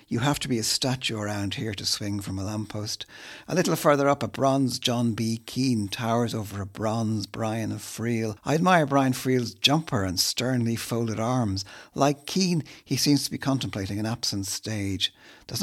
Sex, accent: male, Irish